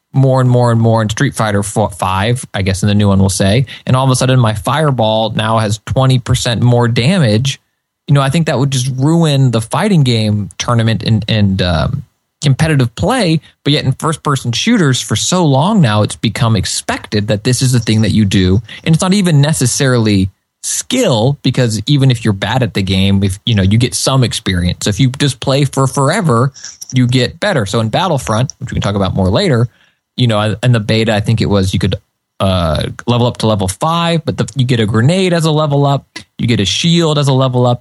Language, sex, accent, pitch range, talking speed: English, male, American, 110-145 Hz, 230 wpm